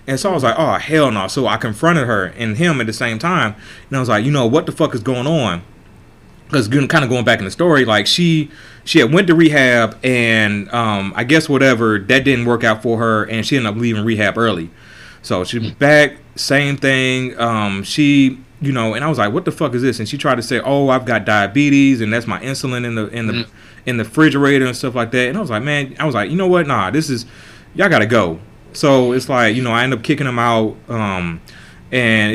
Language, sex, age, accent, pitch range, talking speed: English, male, 30-49, American, 110-135 Hz, 255 wpm